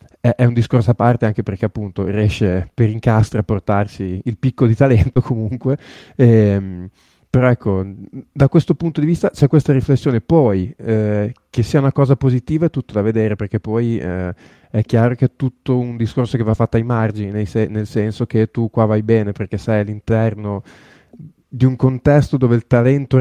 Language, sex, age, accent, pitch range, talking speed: Italian, male, 20-39, native, 105-130 Hz, 185 wpm